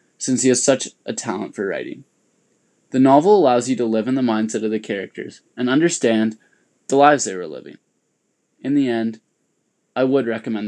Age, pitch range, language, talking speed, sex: 20-39, 110-130 Hz, English, 185 wpm, male